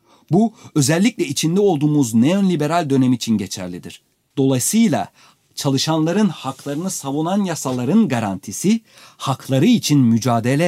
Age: 40-59